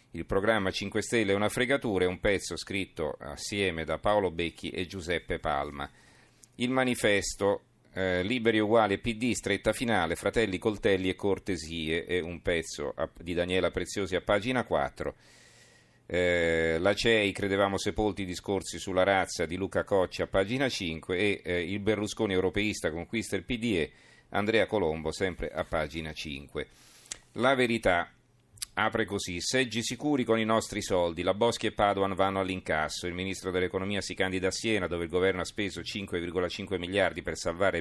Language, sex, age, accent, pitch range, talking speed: Italian, male, 40-59, native, 90-110 Hz, 160 wpm